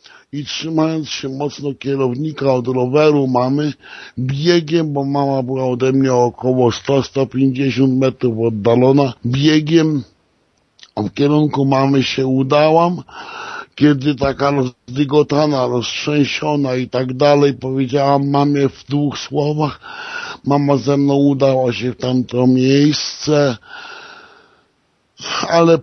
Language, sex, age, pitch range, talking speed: Polish, male, 50-69, 130-145 Hz, 110 wpm